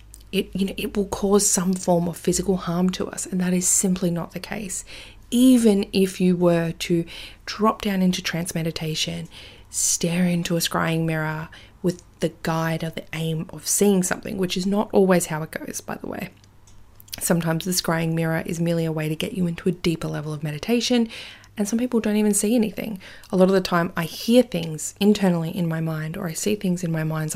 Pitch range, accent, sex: 160-195 Hz, Australian, female